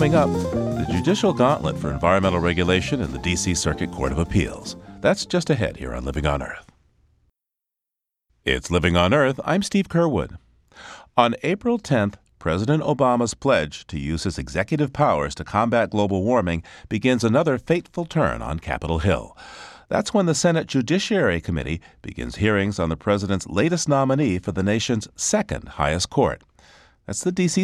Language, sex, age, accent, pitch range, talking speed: English, male, 40-59, American, 80-130 Hz, 160 wpm